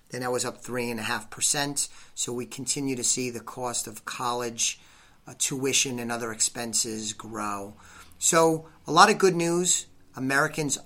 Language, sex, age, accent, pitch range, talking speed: English, male, 40-59, American, 120-140 Hz, 145 wpm